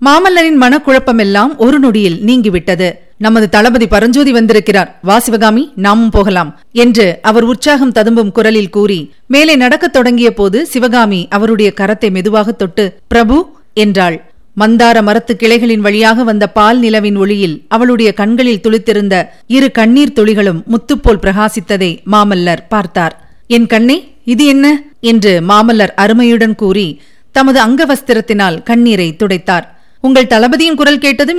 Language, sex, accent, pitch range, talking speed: Tamil, female, native, 205-255 Hz, 120 wpm